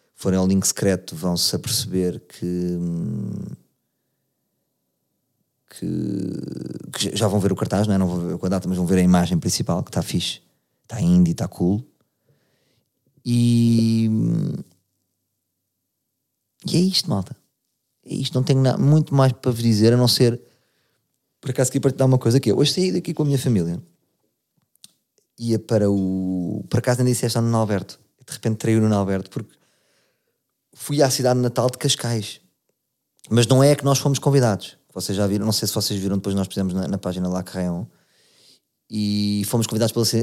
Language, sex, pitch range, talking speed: Portuguese, male, 100-130 Hz, 175 wpm